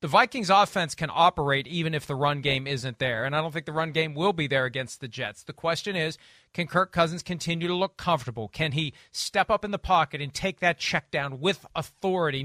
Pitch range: 155-205 Hz